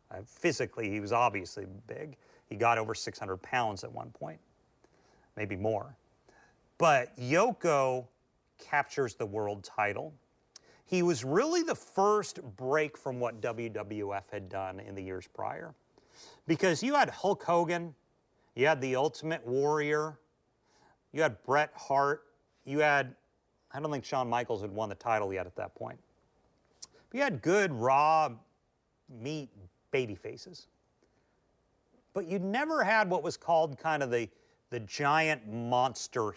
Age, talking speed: 40-59, 140 wpm